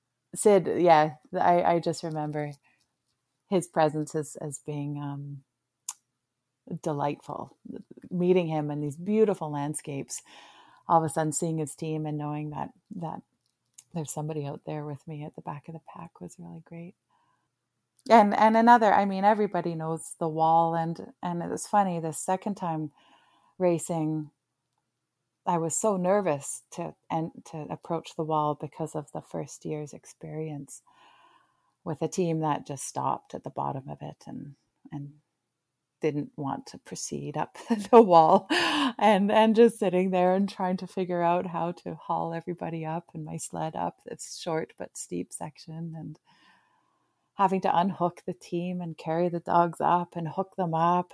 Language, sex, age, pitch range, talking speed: English, female, 30-49, 150-185 Hz, 160 wpm